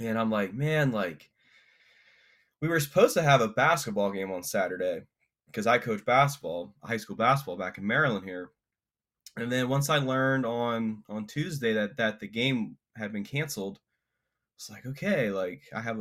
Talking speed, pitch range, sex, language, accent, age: 175 wpm, 100-130 Hz, male, English, American, 20-39